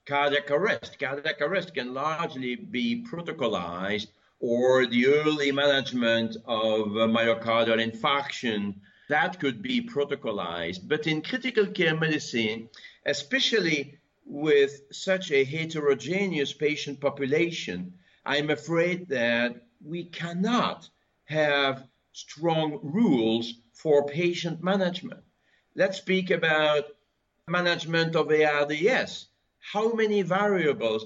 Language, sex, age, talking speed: English, male, 50-69, 100 wpm